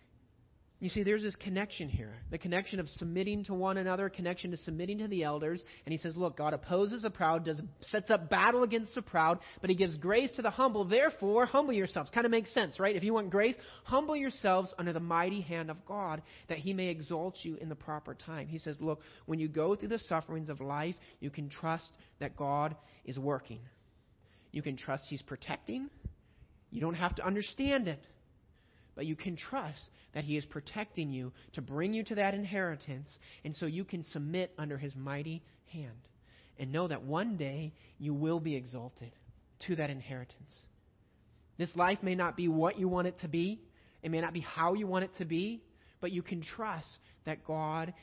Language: English